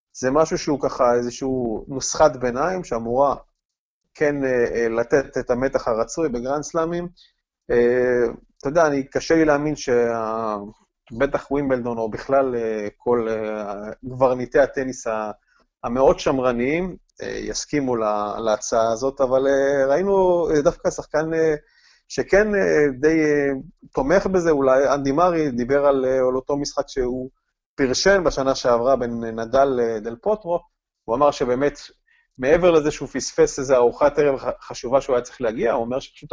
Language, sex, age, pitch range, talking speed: Hebrew, male, 30-49, 120-150 Hz, 120 wpm